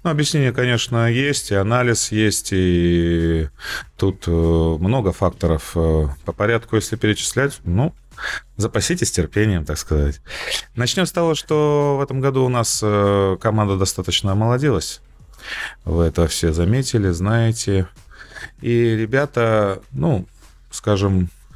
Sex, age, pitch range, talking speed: male, 30-49, 85-120 Hz, 120 wpm